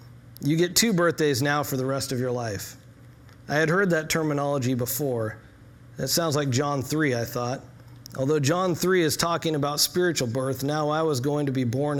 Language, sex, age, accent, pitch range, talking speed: English, male, 40-59, American, 125-155 Hz, 195 wpm